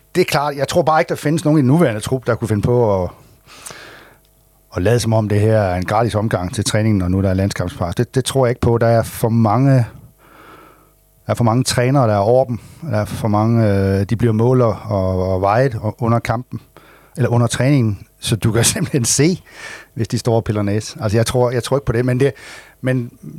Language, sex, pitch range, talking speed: Danish, male, 110-130 Hz, 235 wpm